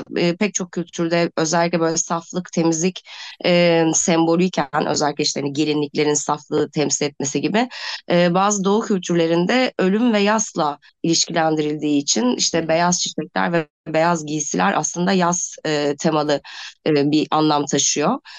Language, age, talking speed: Turkish, 20-39, 130 wpm